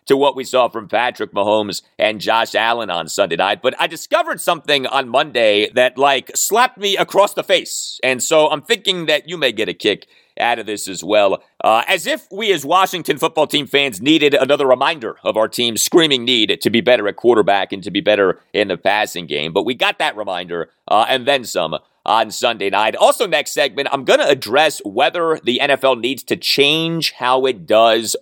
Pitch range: 125-185 Hz